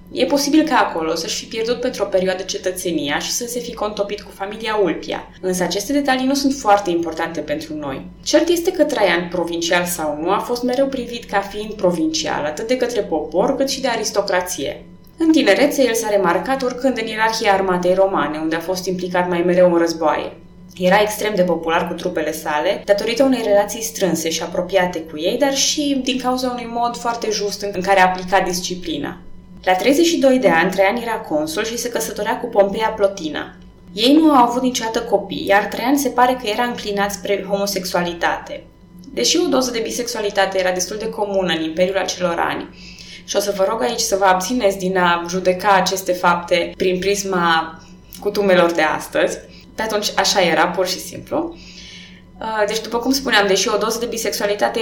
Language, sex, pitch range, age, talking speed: Romanian, female, 180-230 Hz, 20-39, 190 wpm